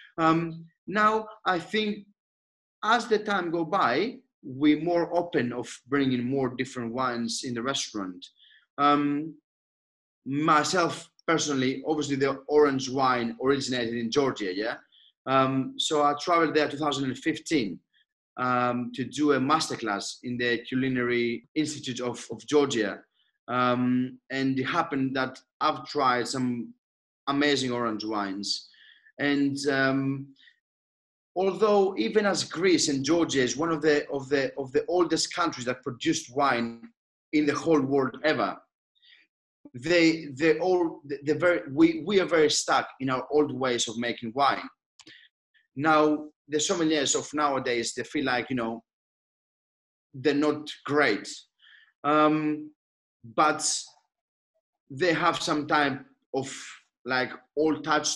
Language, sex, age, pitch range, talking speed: English, male, 30-49, 130-165 Hz, 130 wpm